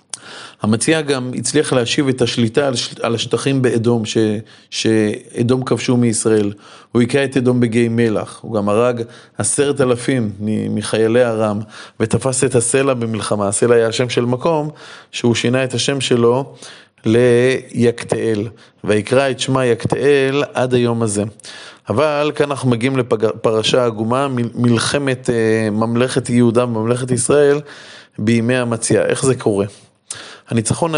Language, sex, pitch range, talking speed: Hebrew, male, 115-140 Hz, 125 wpm